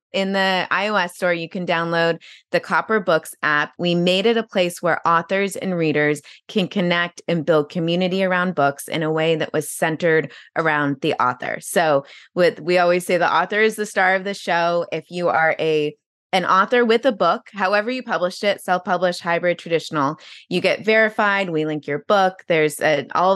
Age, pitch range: 20-39, 155-195 Hz